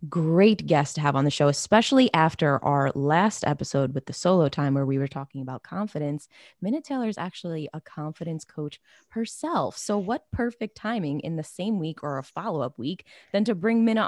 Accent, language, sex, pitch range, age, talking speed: American, English, female, 145-180 Hz, 20-39, 195 wpm